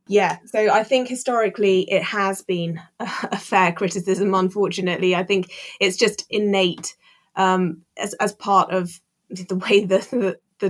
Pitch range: 180-195 Hz